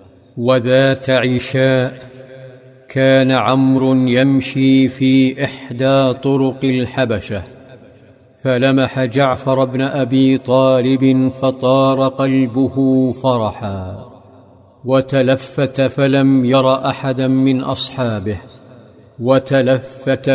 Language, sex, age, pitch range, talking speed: Arabic, male, 50-69, 130-135 Hz, 70 wpm